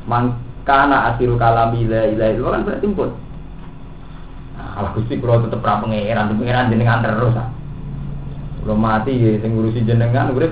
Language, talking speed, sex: Indonesian, 130 wpm, male